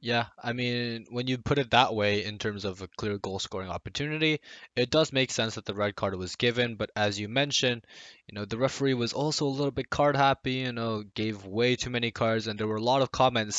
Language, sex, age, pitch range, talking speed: English, male, 20-39, 105-135 Hz, 245 wpm